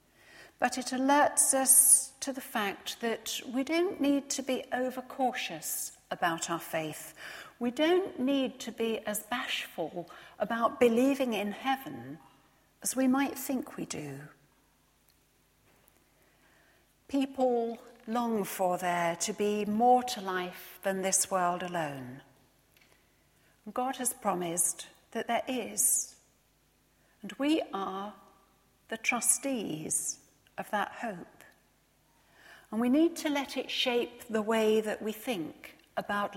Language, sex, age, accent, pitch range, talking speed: English, female, 60-79, British, 195-255 Hz, 120 wpm